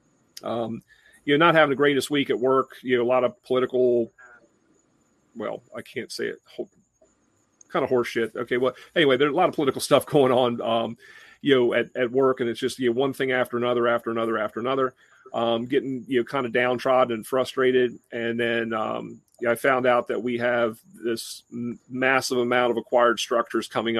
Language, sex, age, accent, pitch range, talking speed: English, male, 40-59, American, 120-130 Hz, 210 wpm